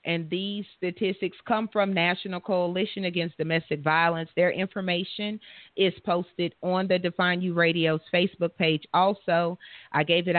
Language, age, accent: English, 30-49, American